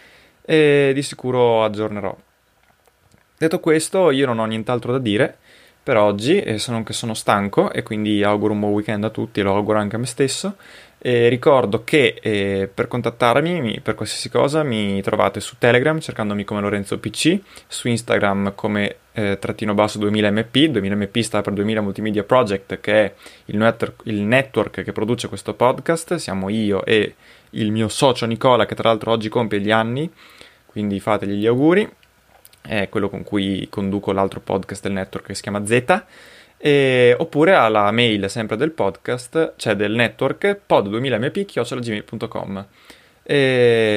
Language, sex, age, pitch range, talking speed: Italian, male, 20-39, 105-125 Hz, 165 wpm